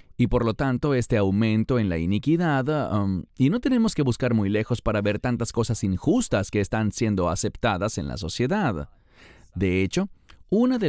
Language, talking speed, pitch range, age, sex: English, 175 wpm, 95-130 Hz, 40-59, male